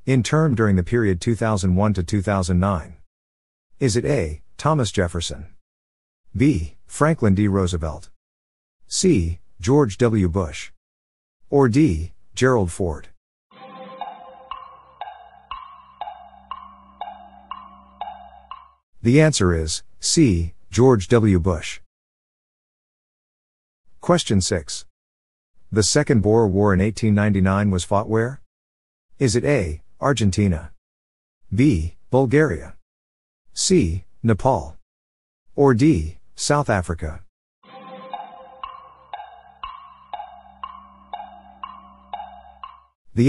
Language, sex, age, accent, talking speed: English, male, 50-69, American, 75 wpm